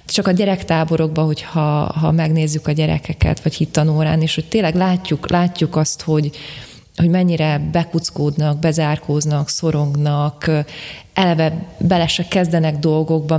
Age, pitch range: 20-39, 145-165 Hz